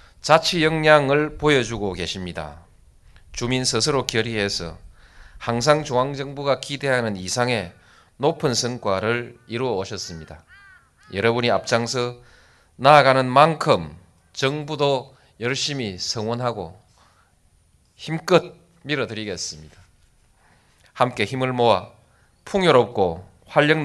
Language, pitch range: Korean, 90-140 Hz